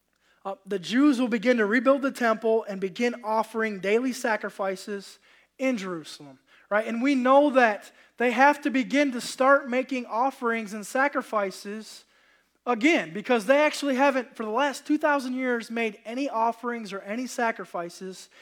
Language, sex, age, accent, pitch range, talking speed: English, male, 20-39, American, 210-270 Hz, 155 wpm